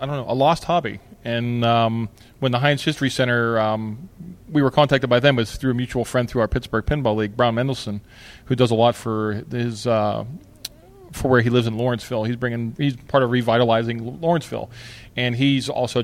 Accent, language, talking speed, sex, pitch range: American, English, 200 wpm, male, 110-125 Hz